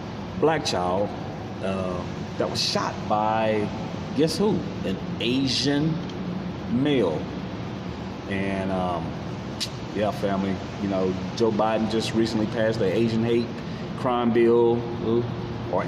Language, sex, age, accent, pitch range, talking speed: English, male, 30-49, American, 95-115 Hz, 110 wpm